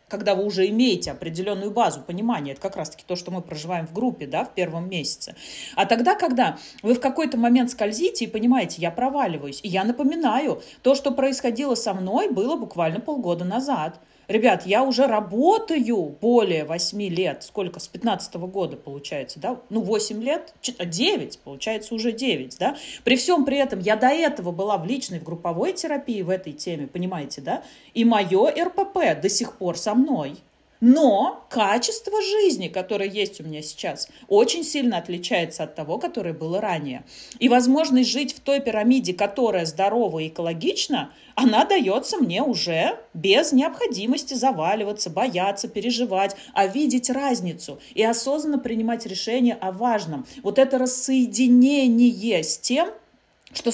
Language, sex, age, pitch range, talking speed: Russian, female, 30-49, 190-260 Hz, 155 wpm